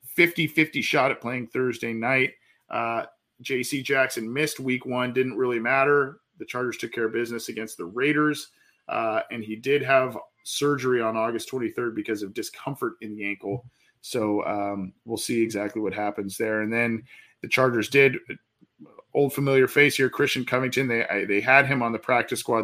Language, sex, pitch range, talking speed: English, male, 110-135 Hz, 180 wpm